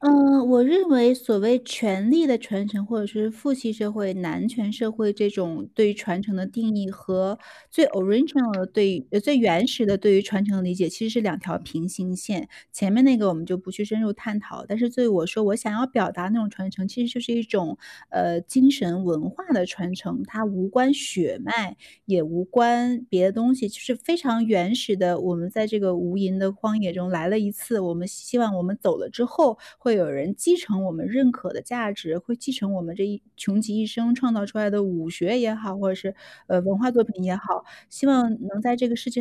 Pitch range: 190-245 Hz